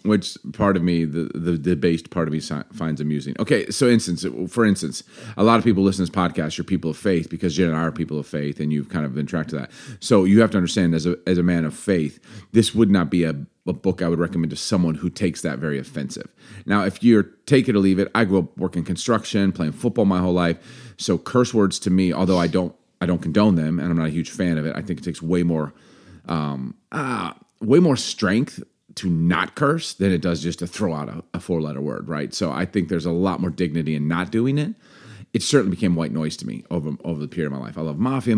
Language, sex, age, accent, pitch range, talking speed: English, male, 30-49, American, 80-100 Hz, 265 wpm